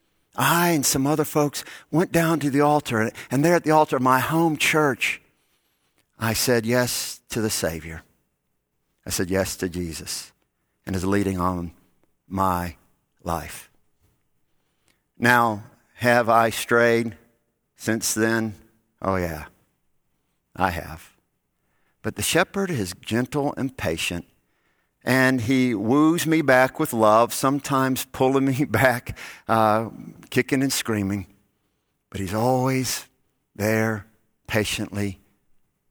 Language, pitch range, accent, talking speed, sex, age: English, 100-135 Hz, American, 120 wpm, male, 50-69